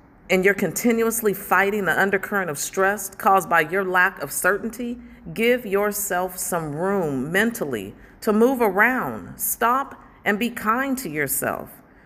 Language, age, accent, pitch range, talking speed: English, 40-59, American, 160-225 Hz, 140 wpm